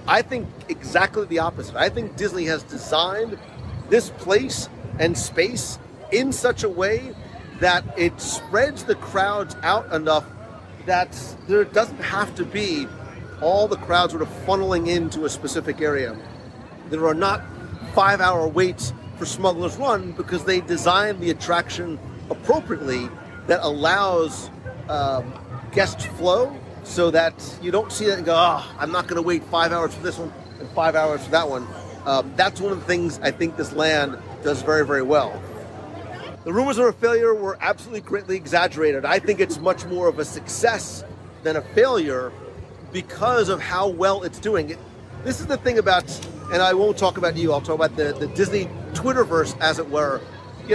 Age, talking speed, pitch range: 40-59, 175 wpm, 155-195 Hz